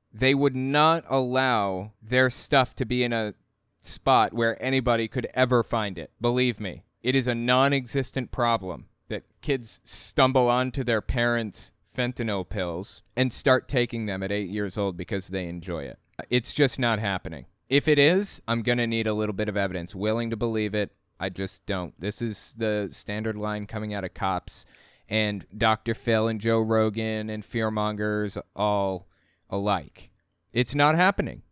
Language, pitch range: English, 100-125 Hz